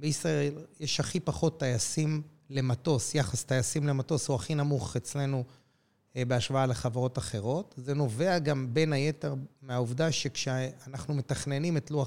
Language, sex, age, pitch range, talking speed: Hebrew, male, 30-49, 125-155 Hz, 130 wpm